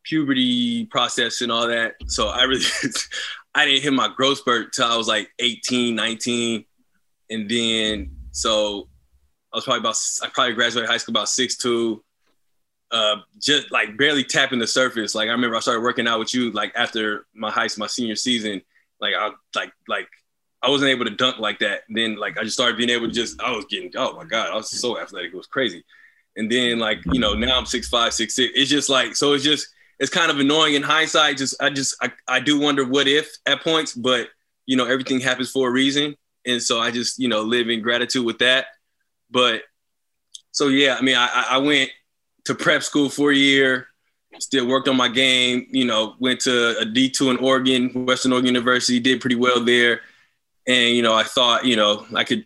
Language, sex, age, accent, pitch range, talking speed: English, male, 20-39, American, 115-135 Hz, 215 wpm